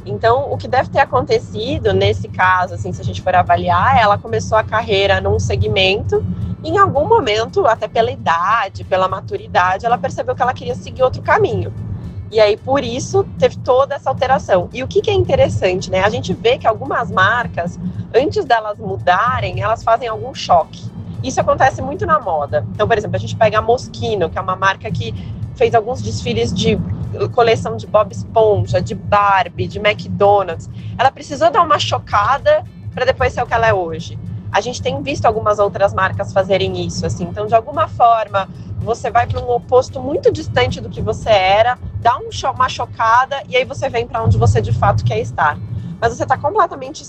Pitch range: 175-265 Hz